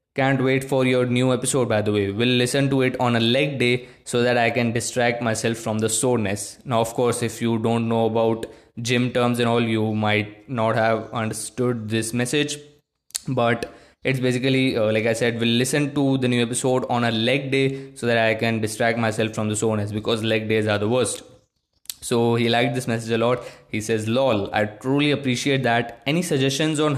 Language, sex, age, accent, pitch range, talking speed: Hindi, male, 20-39, native, 110-130 Hz, 210 wpm